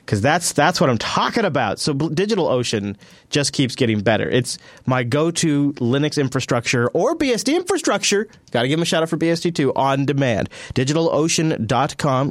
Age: 30-49